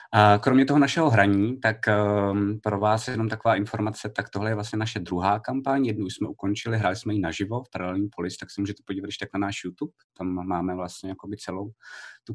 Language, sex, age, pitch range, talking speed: Czech, male, 20-39, 100-110 Hz, 220 wpm